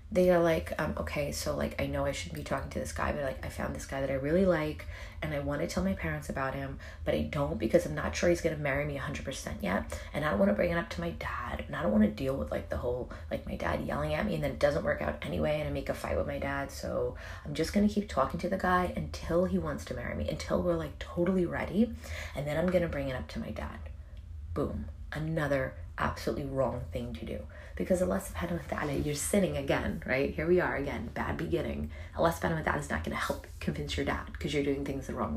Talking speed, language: 265 wpm, English